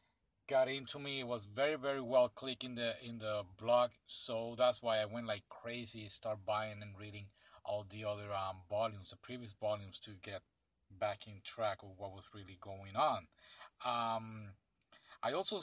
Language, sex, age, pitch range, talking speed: English, male, 40-59, 110-150 Hz, 180 wpm